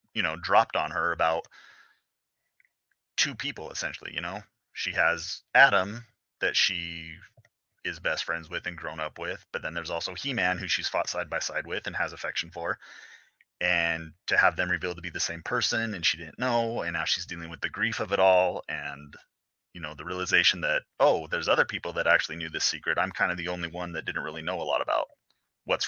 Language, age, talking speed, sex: English, 30-49, 215 wpm, male